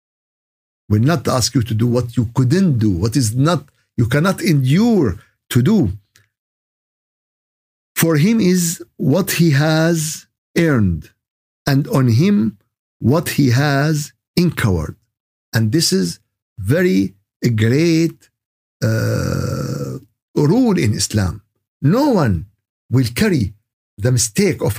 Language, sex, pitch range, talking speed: Arabic, male, 110-170 Hz, 120 wpm